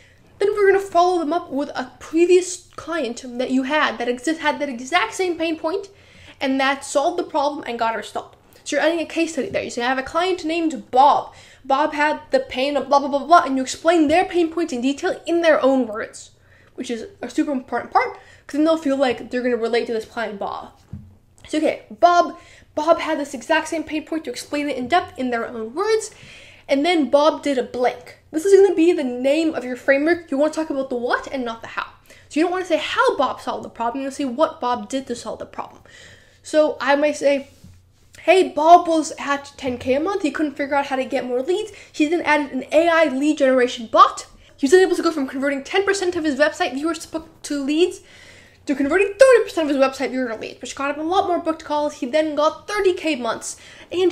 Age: 10-29